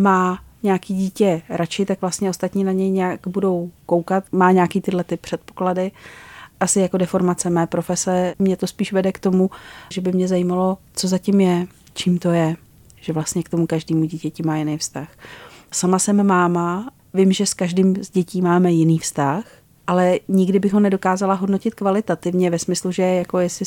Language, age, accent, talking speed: Czech, 40-59, native, 180 wpm